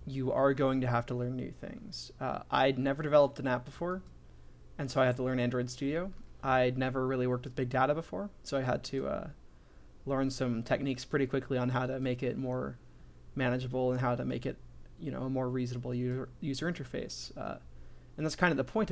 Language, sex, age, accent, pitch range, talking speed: English, male, 20-39, American, 120-140 Hz, 220 wpm